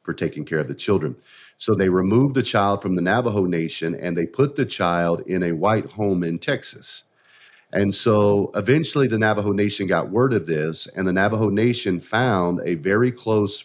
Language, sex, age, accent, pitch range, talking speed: English, male, 40-59, American, 90-110 Hz, 195 wpm